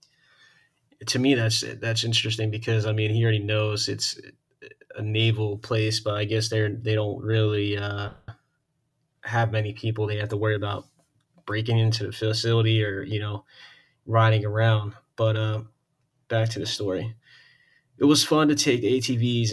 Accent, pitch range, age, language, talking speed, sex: American, 105-125 Hz, 20-39, English, 160 wpm, male